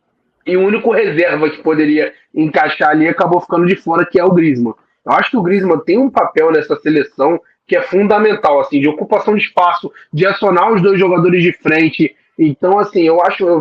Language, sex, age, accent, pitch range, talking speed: Portuguese, male, 20-39, Brazilian, 175-225 Hz, 205 wpm